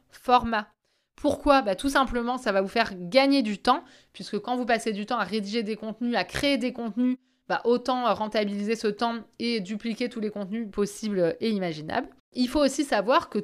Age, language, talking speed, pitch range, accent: 20-39, French, 195 wpm, 210-265 Hz, French